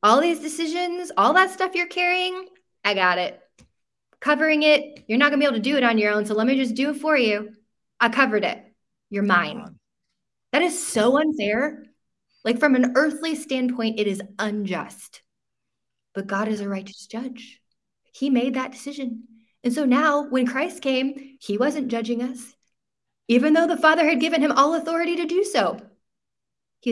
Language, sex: English, female